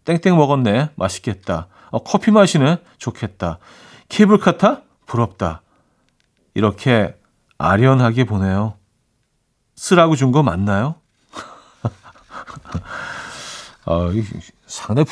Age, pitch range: 40-59, 115-175 Hz